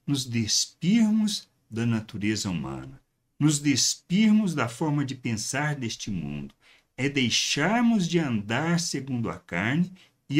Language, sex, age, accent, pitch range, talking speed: Portuguese, male, 60-79, Brazilian, 105-165 Hz, 120 wpm